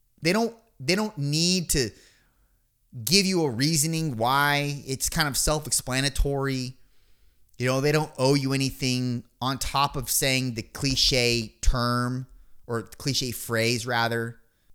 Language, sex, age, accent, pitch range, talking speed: English, male, 30-49, American, 120-165 Hz, 130 wpm